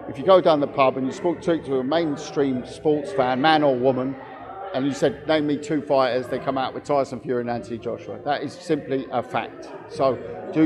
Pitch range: 140-185 Hz